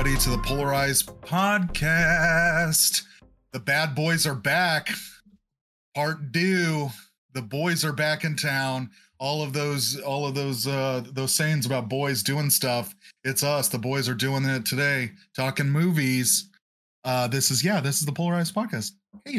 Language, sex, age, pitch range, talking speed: English, male, 30-49, 130-190 Hz, 155 wpm